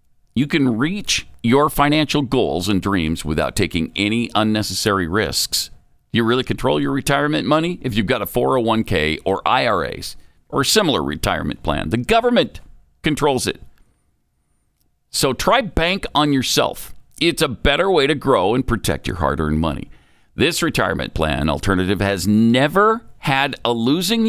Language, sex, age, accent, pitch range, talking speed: English, male, 50-69, American, 90-145 Hz, 150 wpm